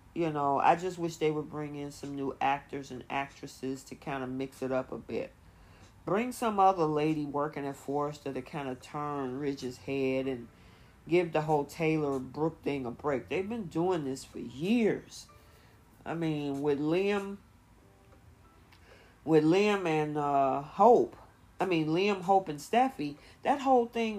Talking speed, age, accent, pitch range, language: 170 wpm, 40-59, American, 140-195 Hz, English